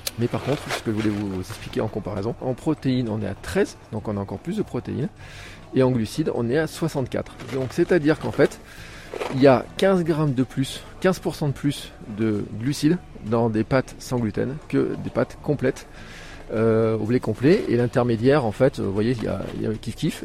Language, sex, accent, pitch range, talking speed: French, male, French, 110-140 Hz, 220 wpm